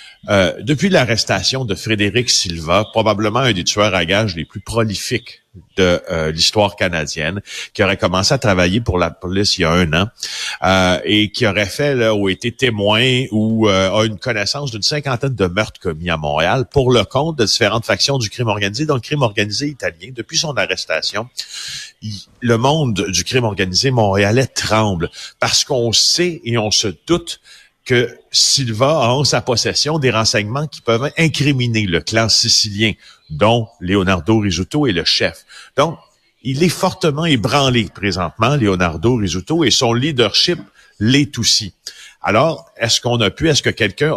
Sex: male